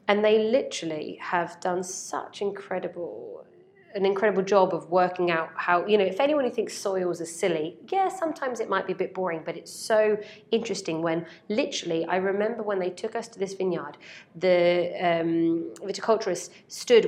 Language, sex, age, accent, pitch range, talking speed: English, female, 30-49, British, 170-205 Hz, 175 wpm